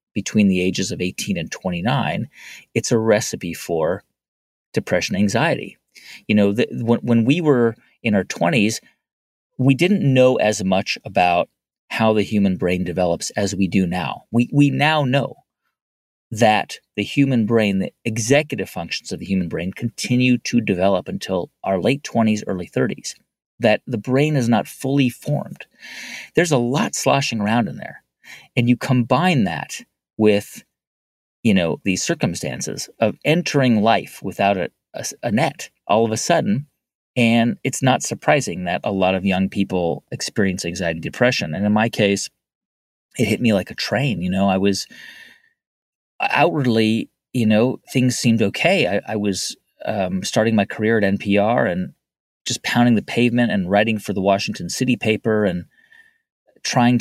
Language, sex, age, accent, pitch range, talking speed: English, male, 30-49, American, 100-125 Hz, 160 wpm